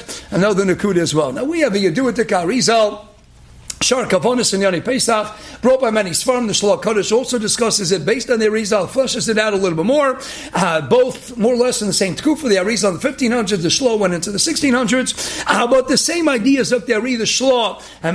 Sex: male